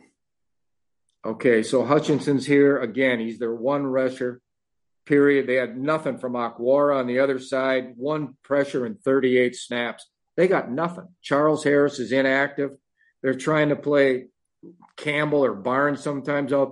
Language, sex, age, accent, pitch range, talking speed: English, male, 50-69, American, 125-145 Hz, 145 wpm